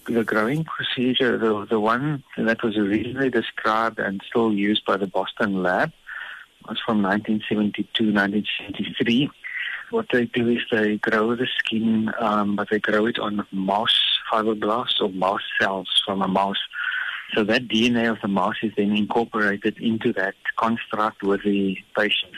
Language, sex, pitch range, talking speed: English, male, 100-110 Hz, 155 wpm